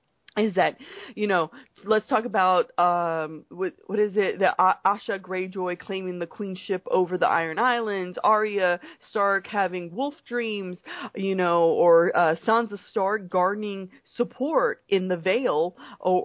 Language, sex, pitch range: English, female, 175-220 Hz